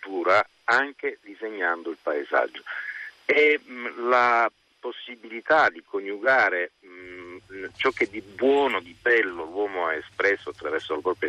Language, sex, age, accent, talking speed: Italian, male, 50-69, native, 120 wpm